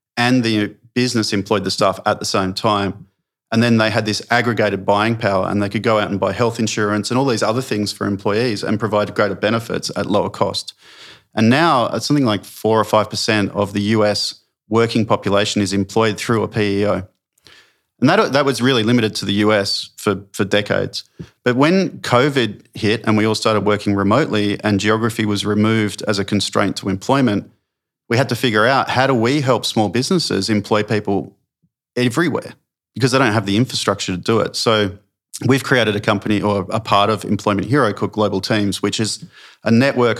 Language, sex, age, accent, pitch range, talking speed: English, male, 40-59, Australian, 100-120 Hz, 195 wpm